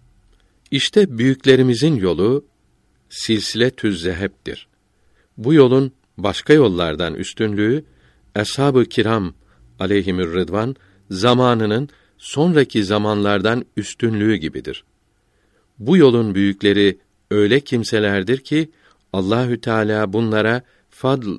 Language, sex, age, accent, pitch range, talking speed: Turkish, male, 50-69, native, 95-120 Hz, 80 wpm